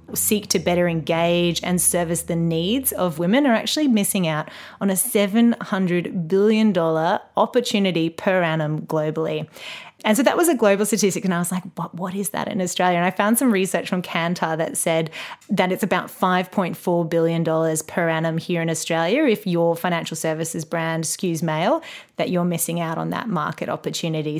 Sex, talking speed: female, 180 wpm